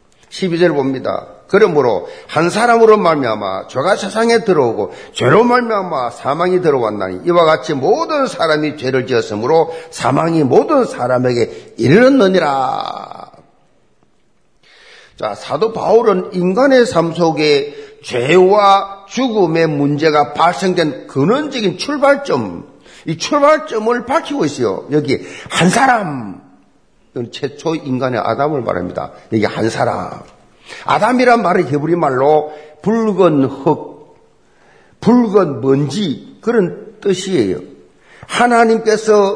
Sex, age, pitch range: male, 50-69, 150-240 Hz